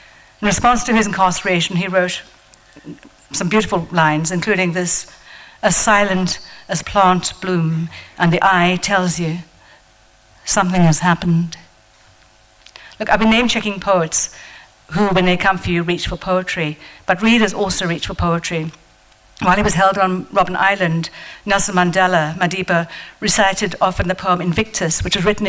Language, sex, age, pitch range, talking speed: English, female, 60-79, 170-195 Hz, 150 wpm